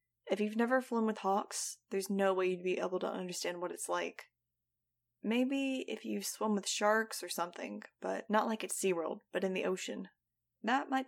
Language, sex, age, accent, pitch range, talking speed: English, female, 20-39, American, 125-205 Hz, 195 wpm